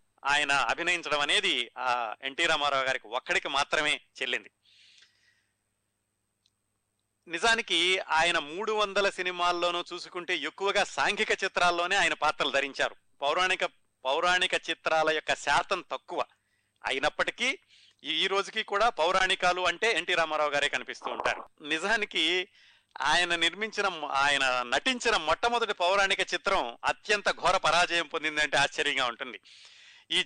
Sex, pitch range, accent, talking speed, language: male, 150-180 Hz, native, 105 wpm, Telugu